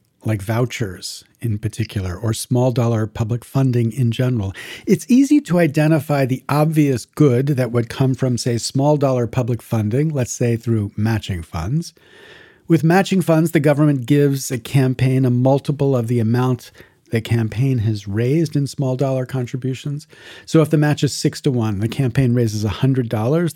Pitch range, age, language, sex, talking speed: 115-155 Hz, 40-59, English, male, 160 wpm